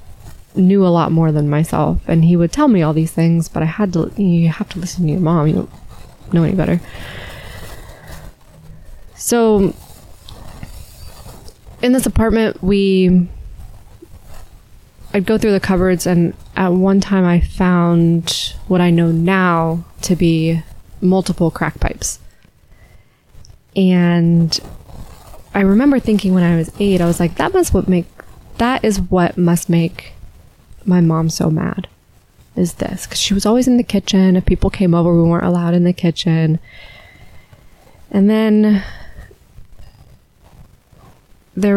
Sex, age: female, 20-39